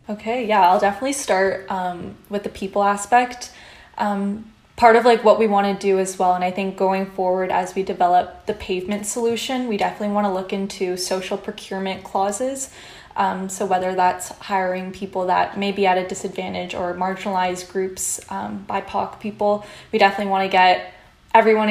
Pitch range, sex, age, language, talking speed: 190-210 Hz, female, 10-29, English, 180 wpm